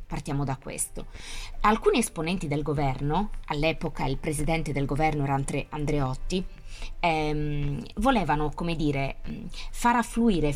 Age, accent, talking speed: 20-39, native, 100 wpm